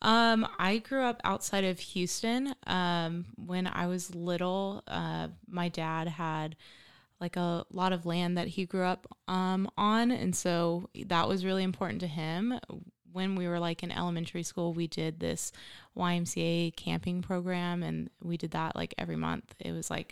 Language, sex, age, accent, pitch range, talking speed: English, female, 20-39, American, 165-185 Hz, 175 wpm